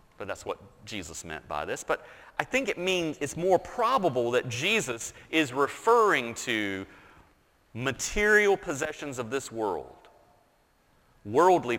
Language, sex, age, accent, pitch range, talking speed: English, male, 40-59, American, 125-165 Hz, 130 wpm